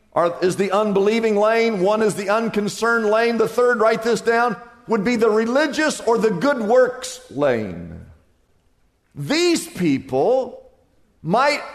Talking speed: 135 wpm